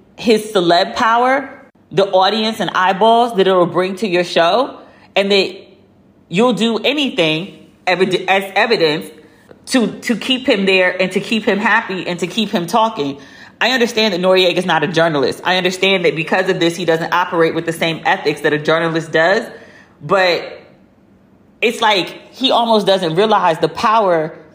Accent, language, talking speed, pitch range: American, English, 170 wpm, 185-255 Hz